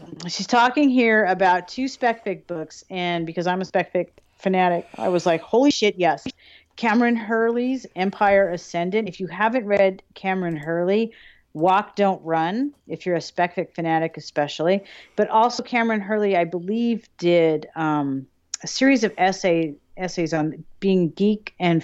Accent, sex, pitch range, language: American, female, 170-215 Hz, English